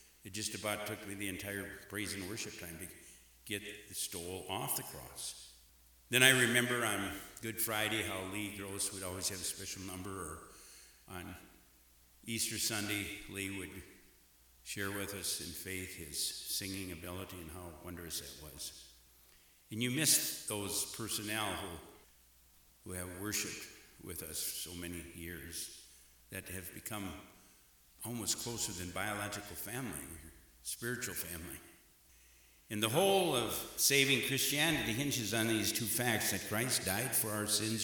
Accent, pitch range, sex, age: American, 85-110 Hz, male, 60-79